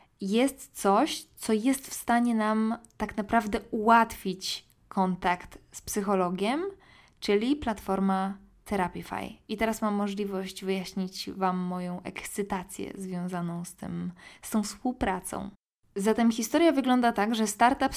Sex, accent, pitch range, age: female, native, 190-230 Hz, 20-39